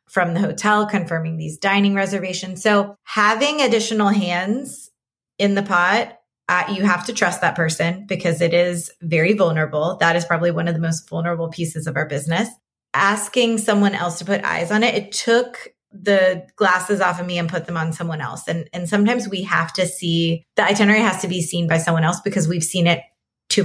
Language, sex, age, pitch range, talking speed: English, female, 20-39, 170-200 Hz, 205 wpm